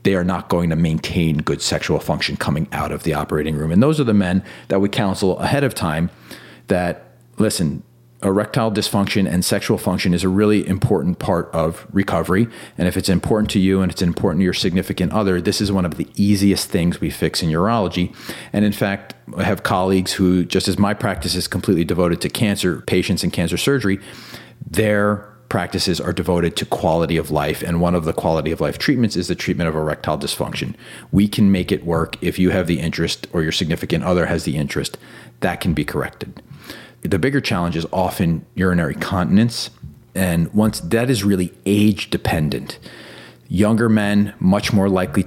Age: 30-49